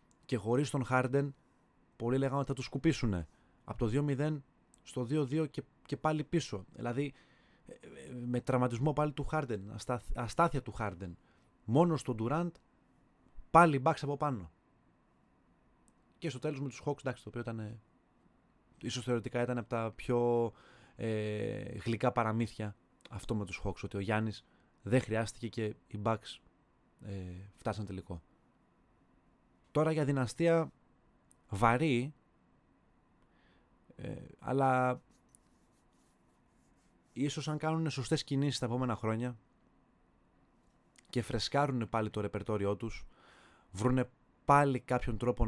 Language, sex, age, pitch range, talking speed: Greek, male, 20-39, 105-130 Hz, 115 wpm